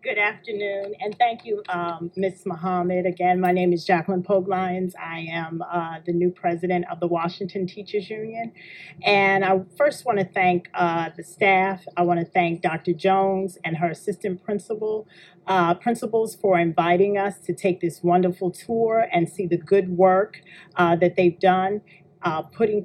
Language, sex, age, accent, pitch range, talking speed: English, female, 40-59, American, 175-200 Hz, 170 wpm